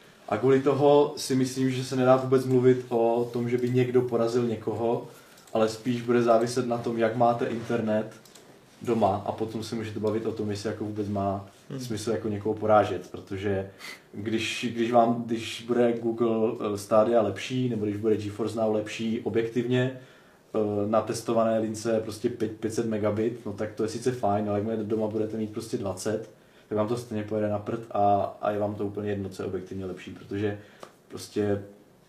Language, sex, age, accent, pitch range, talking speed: Czech, male, 20-39, native, 105-120 Hz, 180 wpm